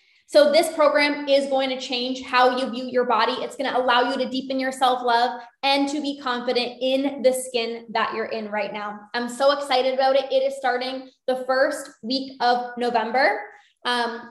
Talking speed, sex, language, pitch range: 195 wpm, female, English, 245-275 Hz